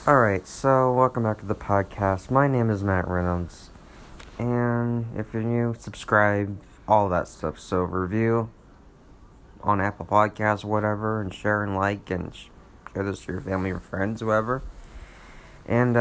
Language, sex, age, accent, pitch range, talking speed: English, male, 30-49, American, 95-110 Hz, 155 wpm